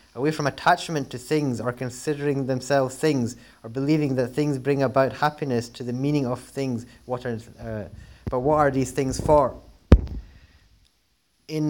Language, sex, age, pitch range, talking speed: English, male, 20-39, 120-140 Hz, 165 wpm